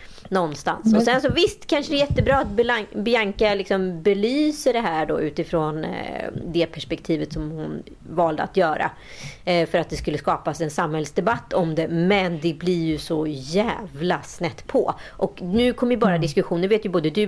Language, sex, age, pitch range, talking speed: Swedish, female, 30-49, 160-220 Hz, 175 wpm